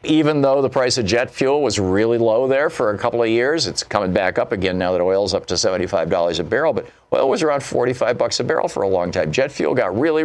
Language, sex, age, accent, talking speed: English, male, 50-69, American, 270 wpm